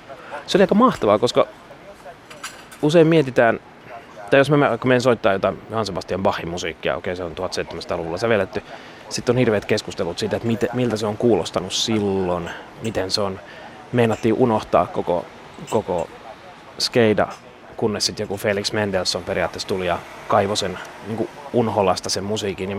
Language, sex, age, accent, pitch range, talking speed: Finnish, male, 30-49, native, 100-120 Hz, 155 wpm